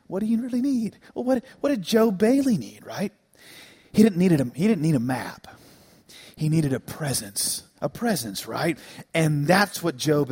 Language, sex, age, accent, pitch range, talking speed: English, male, 40-59, American, 155-250 Hz, 190 wpm